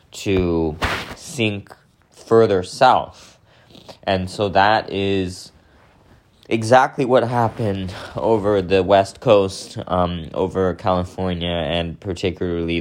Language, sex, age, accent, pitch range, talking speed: English, male, 20-39, American, 85-105 Hz, 95 wpm